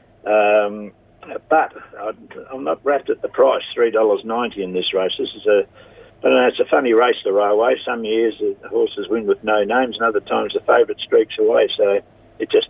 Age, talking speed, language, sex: 60-79, 200 wpm, English, male